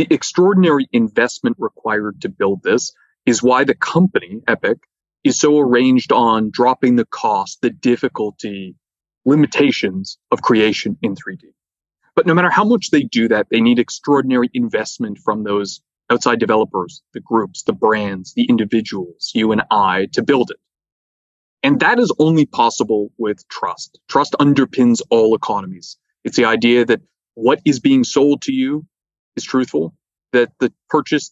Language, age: English, 30-49